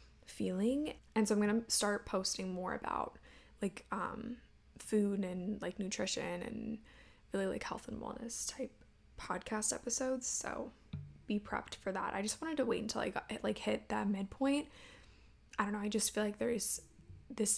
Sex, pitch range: female, 200-225 Hz